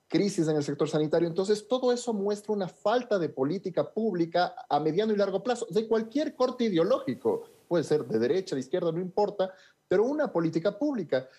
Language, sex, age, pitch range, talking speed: Spanish, male, 40-59, 140-210 Hz, 185 wpm